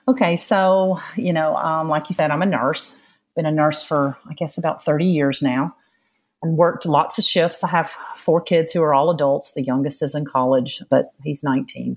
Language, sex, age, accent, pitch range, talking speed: English, female, 40-59, American, 150-190 Hz, 210 wpm